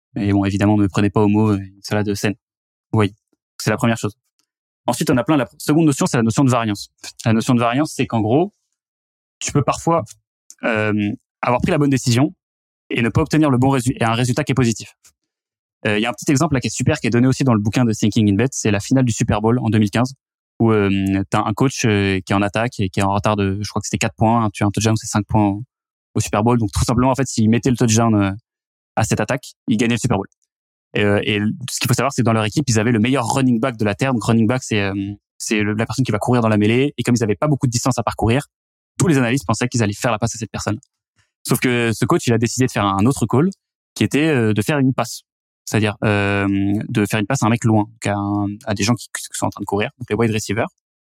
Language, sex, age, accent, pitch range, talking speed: French, male, 20-39, French, 105-125 Hz, 280 wpm